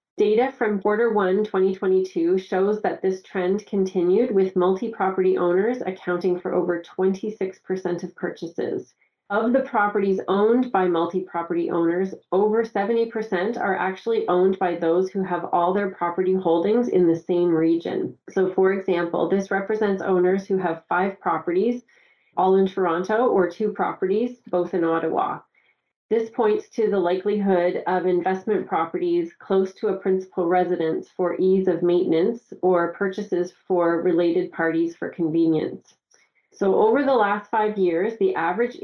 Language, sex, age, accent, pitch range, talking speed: English, female, 30-49, American, 175-205 Hz, 145 wpm